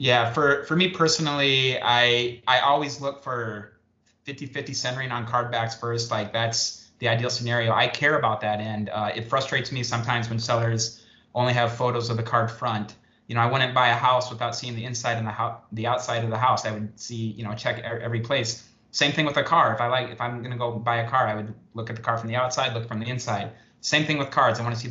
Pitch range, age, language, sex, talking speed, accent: 115-125 Hz, 30-49, English, male, 255 wpm, American